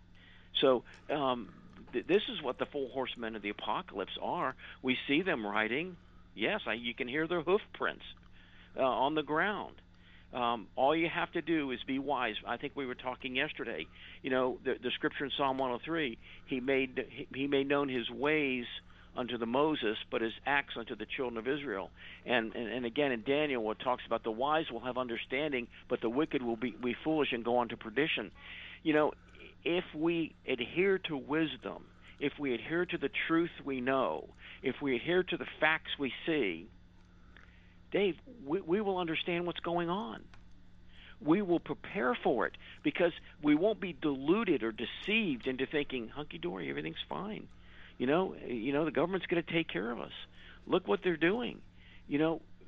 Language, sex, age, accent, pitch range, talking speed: English, male, 50-69, American, 110-155 Hz, 185 wpm